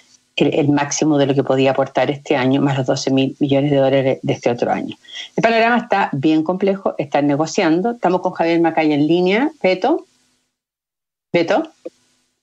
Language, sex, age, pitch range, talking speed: Spanish, female, 40-59, 140-170 Hz, 170 wpm